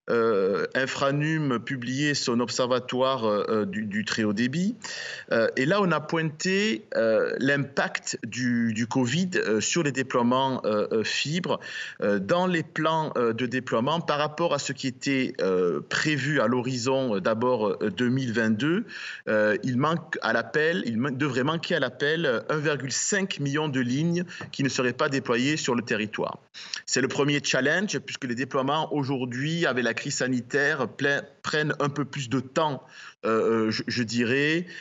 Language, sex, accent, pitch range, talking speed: French, male, French, 125-165 Hz, 160 wpm